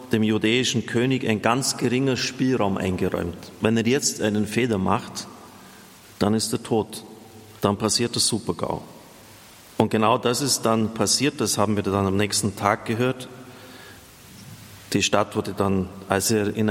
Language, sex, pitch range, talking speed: German, male, 105-120 Hz, 155 wpm